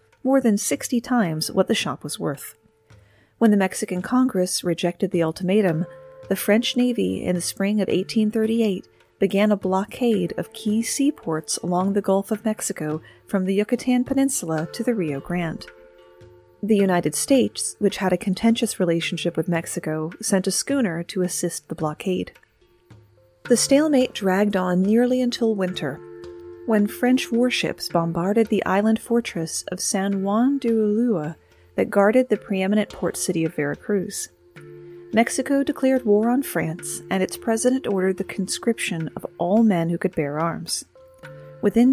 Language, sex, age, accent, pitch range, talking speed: English, female, 30-49, American, 175-230 Hz, 150 wpm